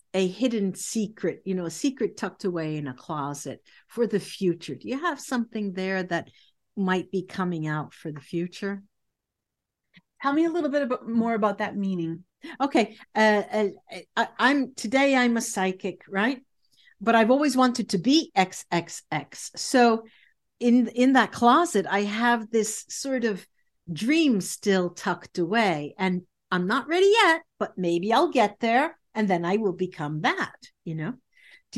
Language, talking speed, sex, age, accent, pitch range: English, 165 wpm, female, 50-69, American, 180-245 Hz